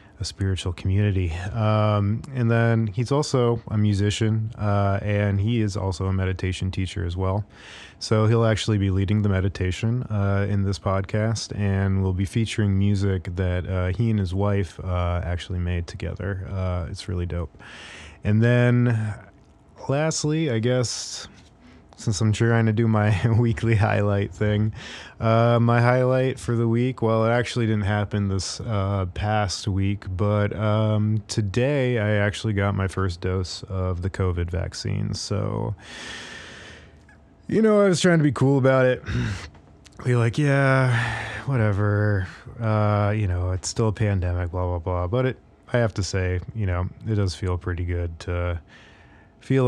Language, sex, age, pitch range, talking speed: English, male, 20-39, 95-115 Hz, 160 wpm